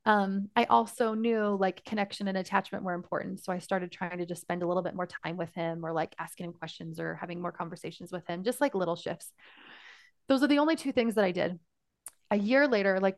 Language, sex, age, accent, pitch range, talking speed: English, female, 20-39, American, 180-225 Hz, 235 wpm